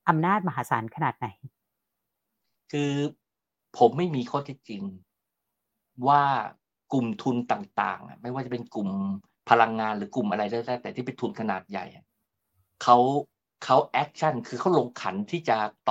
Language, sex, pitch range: Thai, male, 115-150 Hz